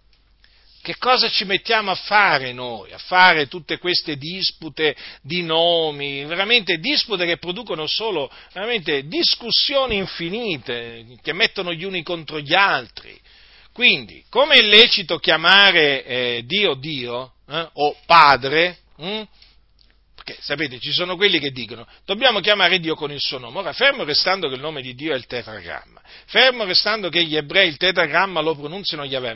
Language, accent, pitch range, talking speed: Italian, native, 145-205 Hz, 155 wpm